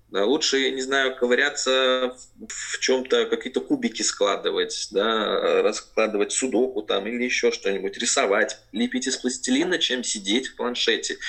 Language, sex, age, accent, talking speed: Russian, male, 20-39, native, 140 wpm